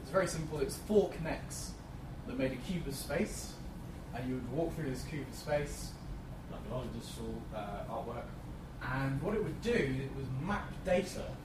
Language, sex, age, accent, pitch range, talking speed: English, male, 20-39, British, 125-155 Hz, 200 wpm